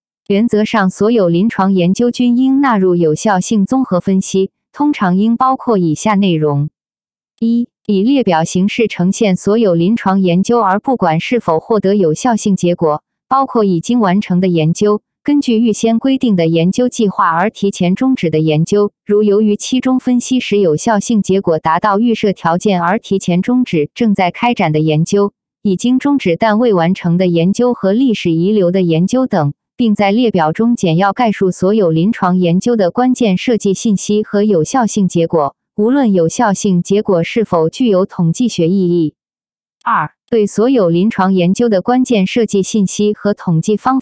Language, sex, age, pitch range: Chinese, female, 20-39, 180-230 Hz